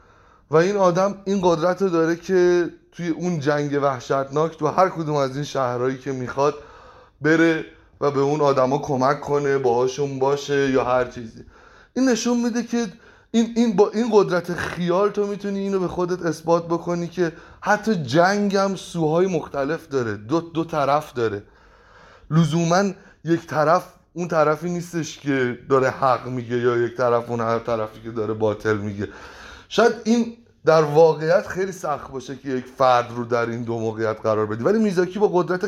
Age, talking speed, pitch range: 30-49, 170 wpm, 130-185 Hz